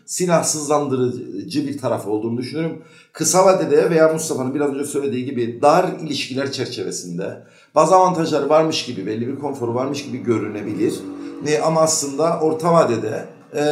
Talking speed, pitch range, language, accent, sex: 130 wpm, 130-165 Hz, Turkish, native, male